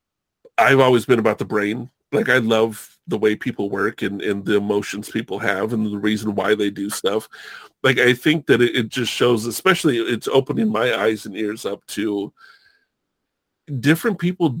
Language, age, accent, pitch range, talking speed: English, 40-59, American, 105-145 Hz, 185 wpm